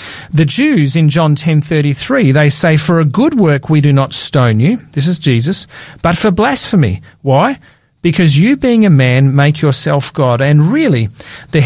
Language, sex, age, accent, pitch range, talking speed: English, male, 40-59, Australian, 135-170 Hz, 185 wpm